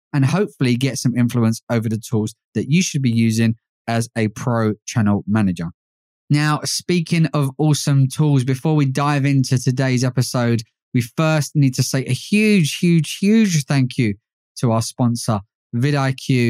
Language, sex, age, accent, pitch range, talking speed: English, male, 20-39, British, 120-150 Hz, 160 wpm